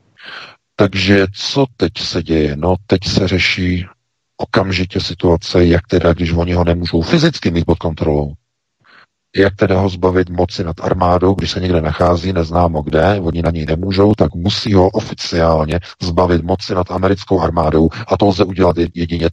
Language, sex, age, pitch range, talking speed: Czech, male, 50-69, 85-110 Hz, 160 wpm